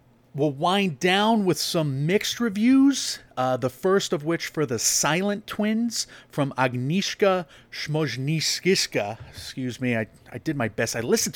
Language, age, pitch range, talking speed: English, 30-49, 120-150 Hz, 145 wpm